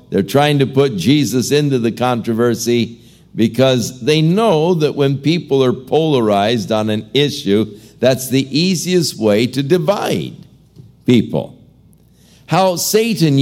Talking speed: 125 wpm